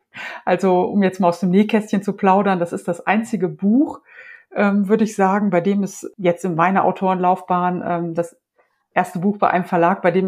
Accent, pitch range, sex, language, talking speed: German, 175-210 Hz, female, German, 200 wpm